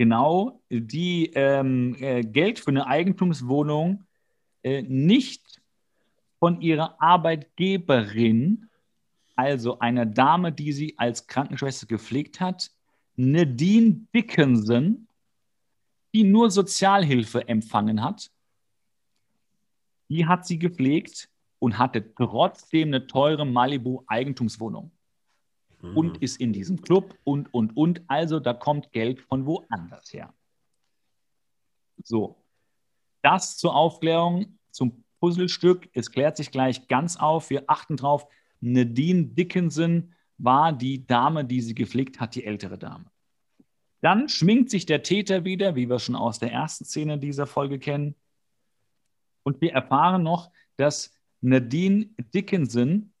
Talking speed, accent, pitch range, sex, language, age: 115 wpm, German, 125-175 Hz, male, German, 40-59